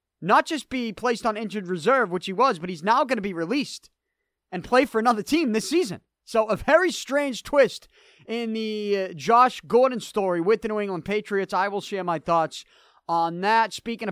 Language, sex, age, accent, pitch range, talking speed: English, male, 30-49, American, 190-255 Hz, 200 wpm